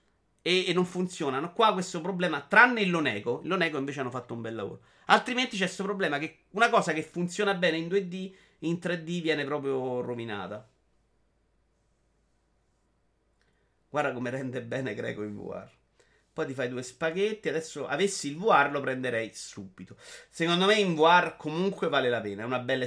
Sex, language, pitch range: male, Italian, 125-175 Hz